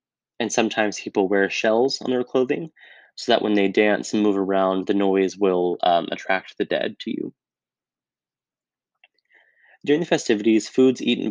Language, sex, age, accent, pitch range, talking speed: English, male, 20-39, American, 105-120 Hz, 160 wpm